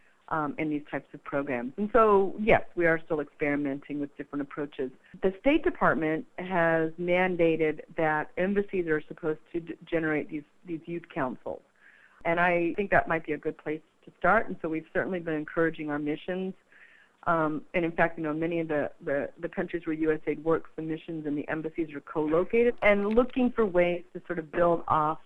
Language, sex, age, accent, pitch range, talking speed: English, female, 50-69, American, 150-175 Hz, 190 wpm